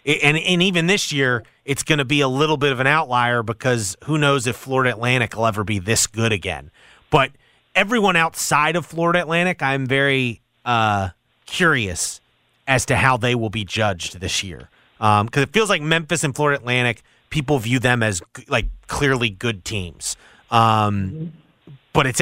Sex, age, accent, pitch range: male, 30-49, American, 115-145 Hz